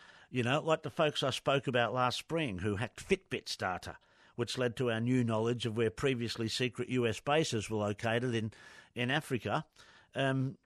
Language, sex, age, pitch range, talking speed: English, male, 50-69, 110-140 Hz, 180 wpm